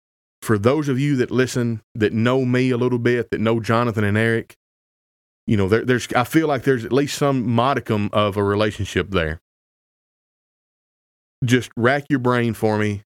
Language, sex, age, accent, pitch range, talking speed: English, male, 30-49, American, 100-130 Hz, 180 wpm